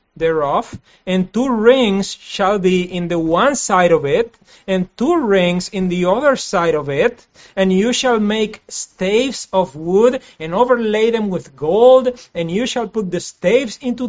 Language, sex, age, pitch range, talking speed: English, male, 40-59, 165-240 Hz, 170 wpm